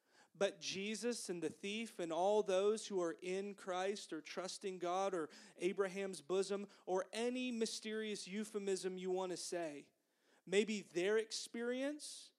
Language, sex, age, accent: English, male, 30-49, American